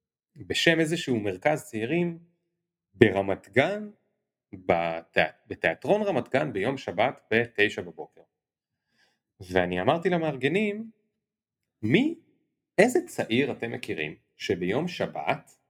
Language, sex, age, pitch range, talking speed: Hebrew, male, 30-49, 120-175 Hz, 90 wpm